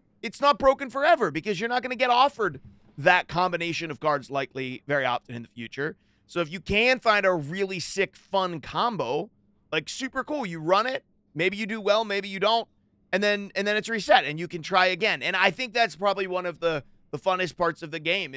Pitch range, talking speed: 145-195 Hz, 225 wpm